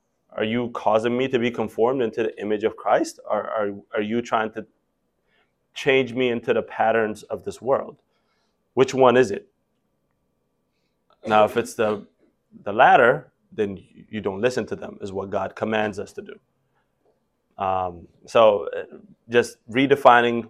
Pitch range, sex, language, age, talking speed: 95-110 Hz, male, English, 20-39, 155 wpm